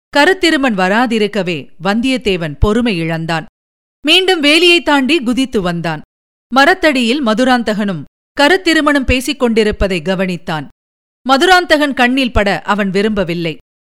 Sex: female